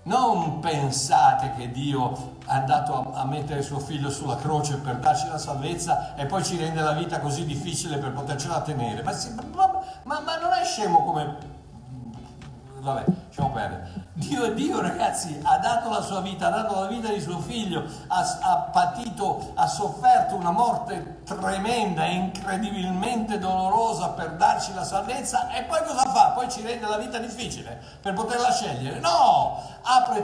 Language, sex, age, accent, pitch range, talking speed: Italian, male, 60-79, native, 145-245 Hz, 160 wpm